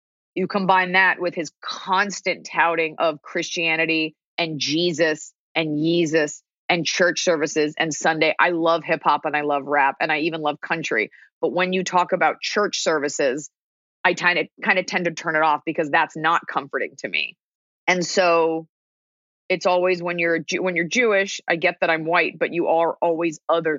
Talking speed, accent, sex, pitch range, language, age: 185 wpm, American, female, 160-185 Hz, English, 30-49